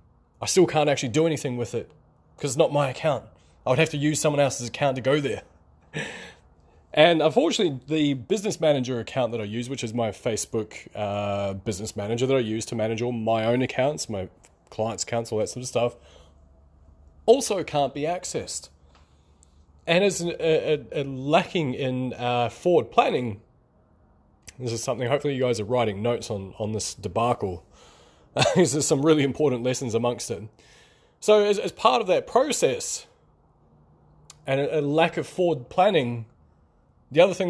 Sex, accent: male, Australian